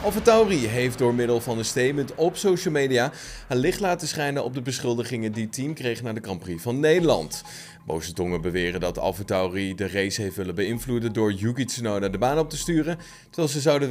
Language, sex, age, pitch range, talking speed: Dutch, male, 30-49, 100-145 Hz, 215 wpm